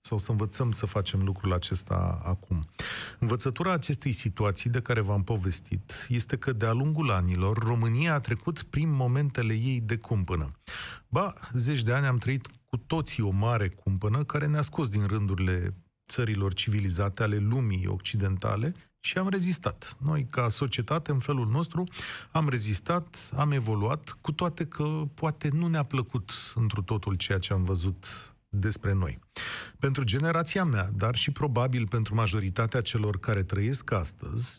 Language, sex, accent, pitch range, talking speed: Romanian, male, native, 105-140 Hz, 155 wpm